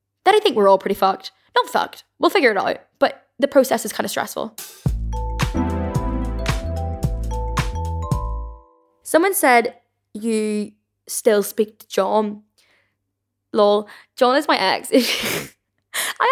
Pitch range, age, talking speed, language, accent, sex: 205-255 Hz, 10-29, 120 wpm, English, British, female